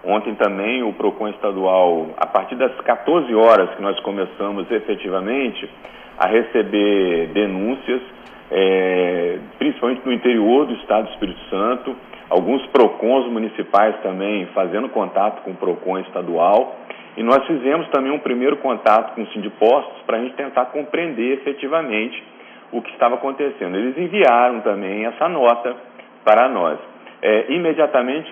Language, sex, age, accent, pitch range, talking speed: Portuguese, male, 40-59, Brazilian, 110-150 Hz, 140 wpm